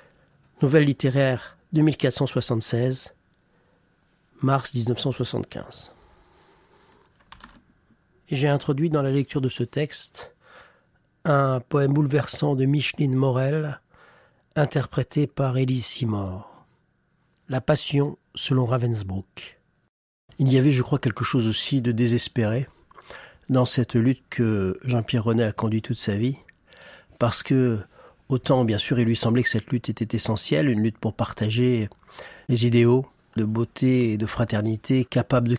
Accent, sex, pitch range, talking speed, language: French, male, 115-135 Hz, 125 wpm, French